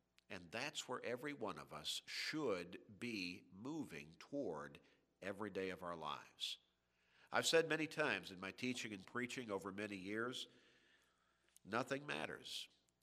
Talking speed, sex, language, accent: 140 wpm, male, English, American